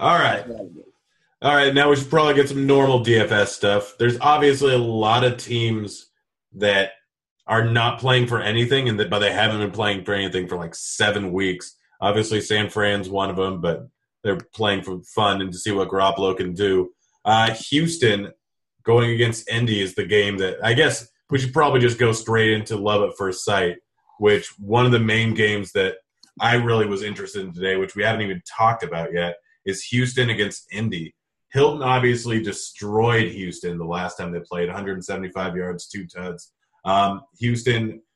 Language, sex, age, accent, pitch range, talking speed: English, male, 30-49, American, 100-120 Hz, 185 wpm